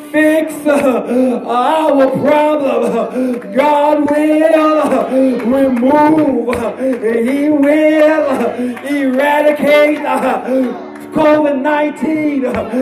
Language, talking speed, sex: English, 70 wpm, male